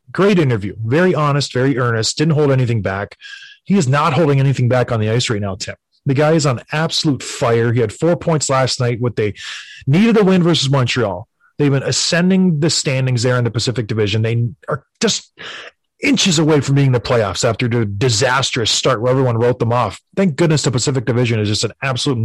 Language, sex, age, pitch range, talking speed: English, male, 30-49, 120-165 Hz, 210 wpm